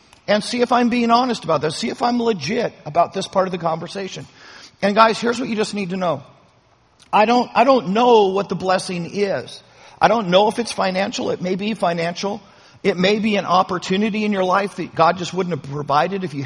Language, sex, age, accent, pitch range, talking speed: English, male, 50-69, American, 165-210 Hz, 225 wpm